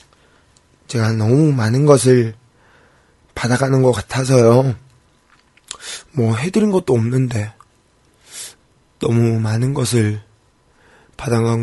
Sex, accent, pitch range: male, native, 115-145 Hz